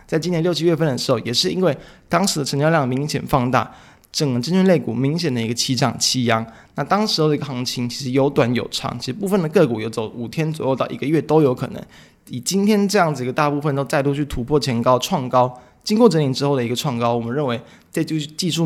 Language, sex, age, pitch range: Chinese, male, 20-39, 125-155 Hz